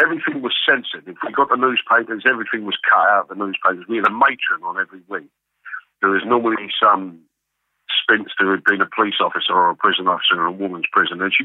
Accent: British